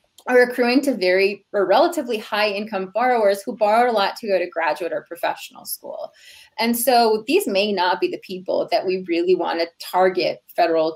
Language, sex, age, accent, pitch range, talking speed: English, female, 30-49, American, 175-225 Hz, 190 wpm